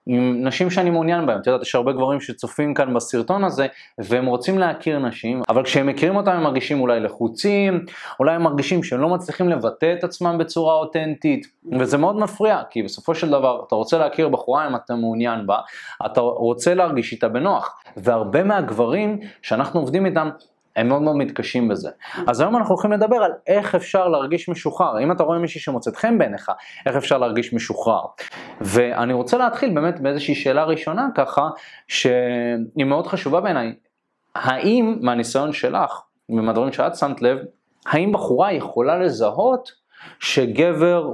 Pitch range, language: 125-175 Hz, Hebrew